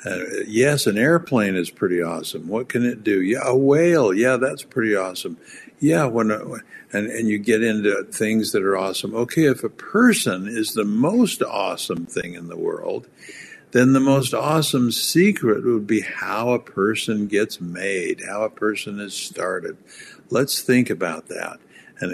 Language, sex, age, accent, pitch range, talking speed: English, male, 60-79, American, 100-140 Hz, 170 wpm